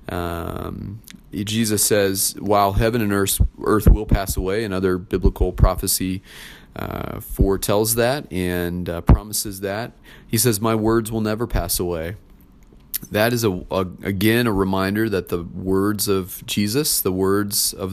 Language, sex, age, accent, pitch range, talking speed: English, male, 30-49, American, 95-110 Hz, 145 wpm